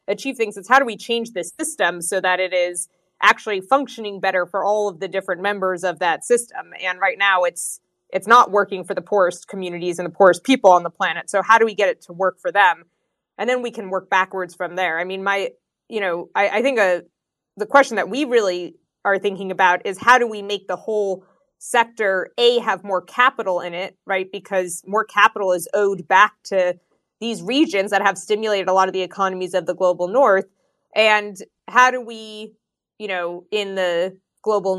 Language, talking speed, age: English, 210 wpm, 20-39